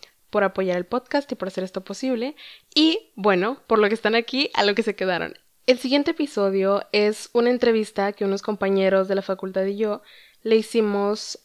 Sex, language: female, Spanish